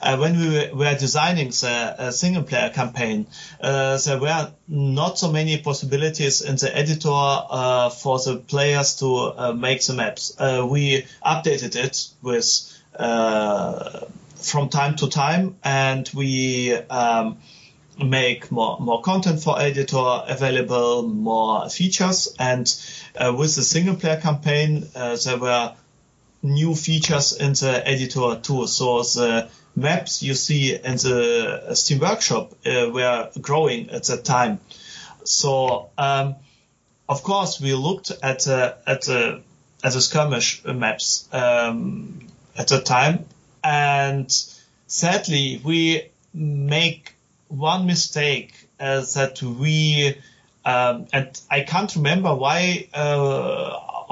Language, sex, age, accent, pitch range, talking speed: English, male, 30-49, German, 125-155 Hz, 125 wpm